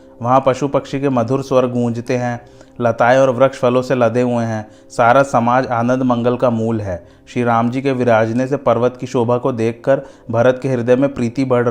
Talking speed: 210 wpm